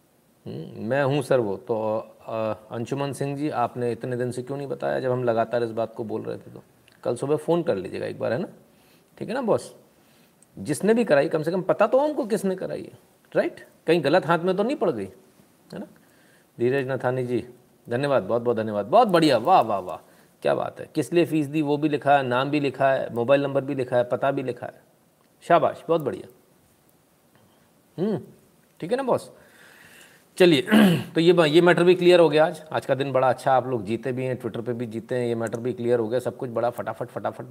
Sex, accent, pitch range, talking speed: male, native, 125-185 Hz, 225 wpm